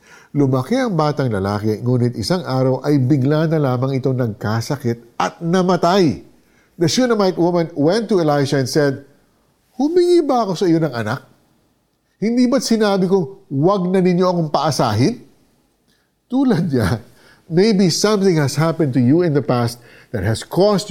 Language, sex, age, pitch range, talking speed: Filipino, male, 50-69, 130-190 Hz, 150 wpm